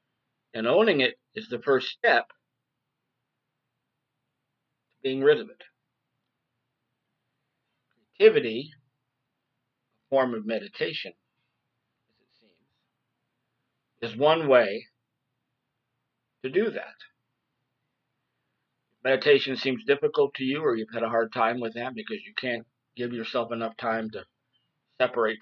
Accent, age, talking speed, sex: American, 50-69, 115 wpm, male